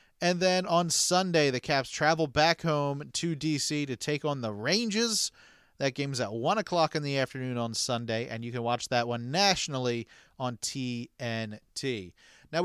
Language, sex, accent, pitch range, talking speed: English, male, American, 135-170 Hz, 170 wpm